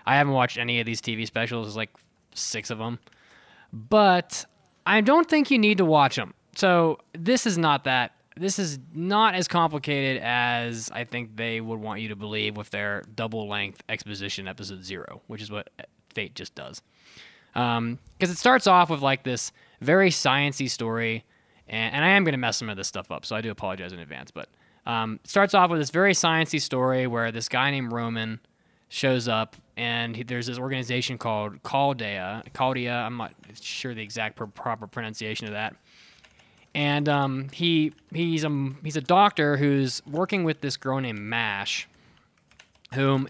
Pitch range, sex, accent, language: 110-155 Hz, male, American, English